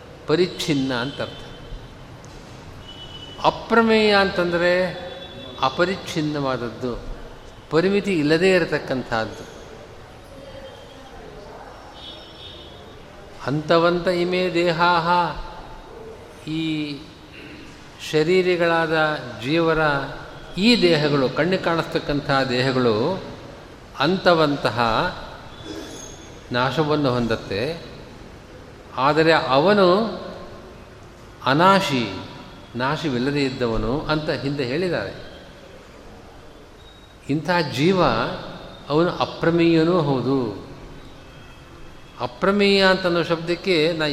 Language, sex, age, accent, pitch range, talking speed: Kannada, male, 50-69, native, 130-175 Hz, 55 wpm